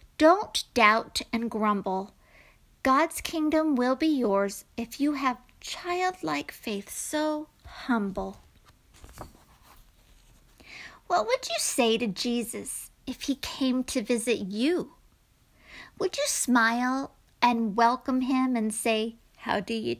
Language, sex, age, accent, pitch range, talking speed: English, female, 50-69, American, 225-305 Hz, 115 wpm